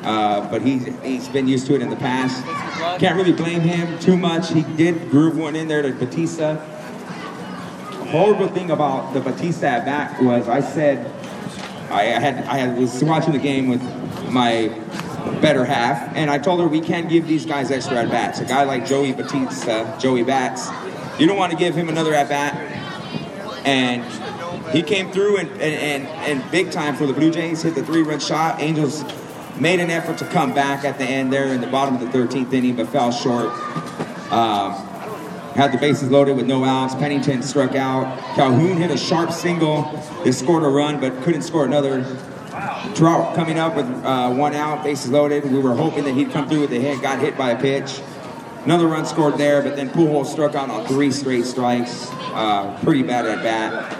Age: 30-49